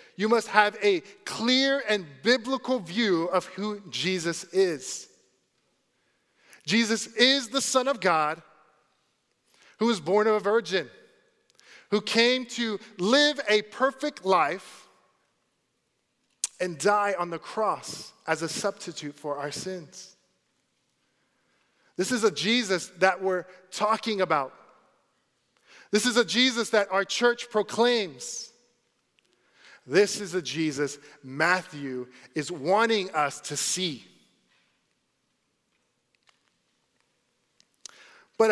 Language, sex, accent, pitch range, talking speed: English, male, American, 155-220 Hz, 105 wpm